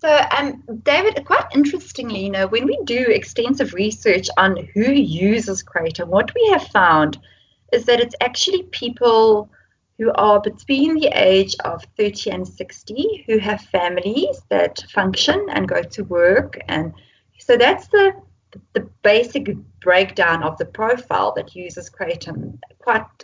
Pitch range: 190-270 Hz